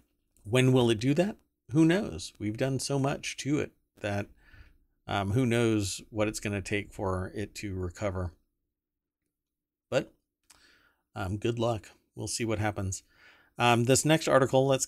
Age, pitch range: 40-59, 100-130 Hz